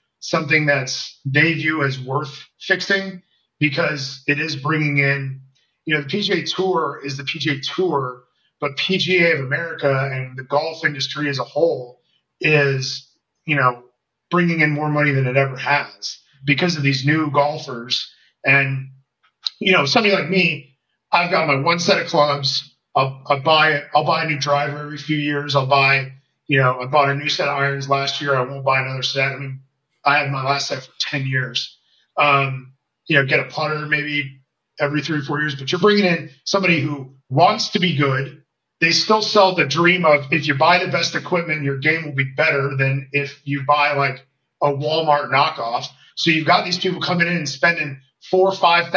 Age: 30-49